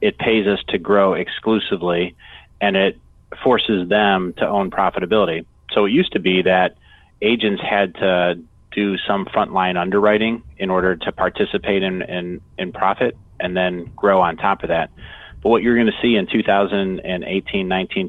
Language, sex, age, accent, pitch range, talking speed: English, male, 30-49, American, 90-100 Hz, 160 wpm